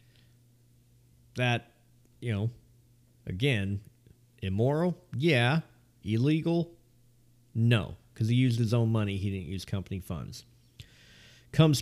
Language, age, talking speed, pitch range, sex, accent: English, 40-59, 100 wpm, 105-125 Hz, male, American